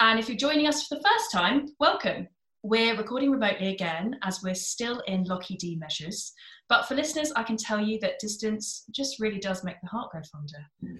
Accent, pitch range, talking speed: British, 185-245 Hz, 205 wpm